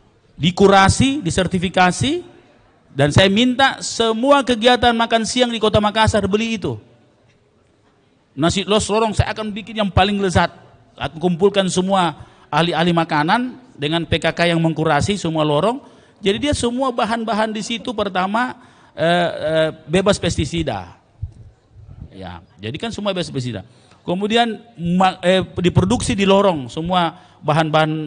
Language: Indonesian